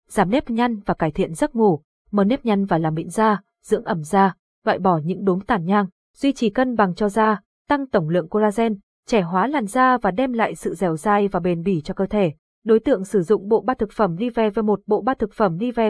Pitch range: 195-235 Hz